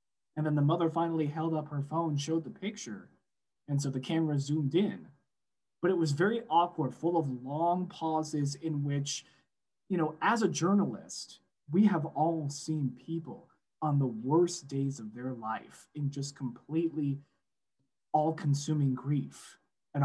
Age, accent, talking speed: 20-39, American, 160 wpm